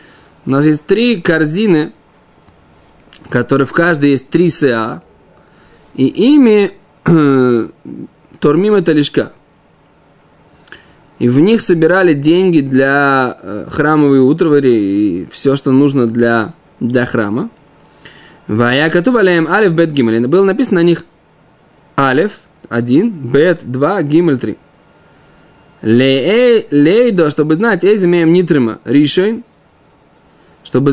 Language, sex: Russian, male